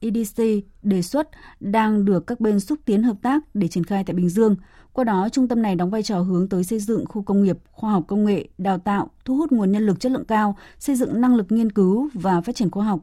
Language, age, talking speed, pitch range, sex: Vietnamese, 20-39, 260 wpm, 180-225 Hz, female